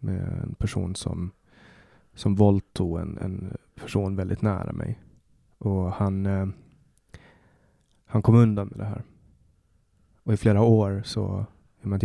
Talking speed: 135 wpm